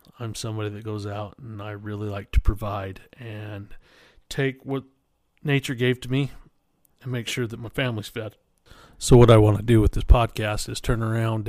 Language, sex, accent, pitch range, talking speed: English, male, American, 105-120 Hz, 195 wpm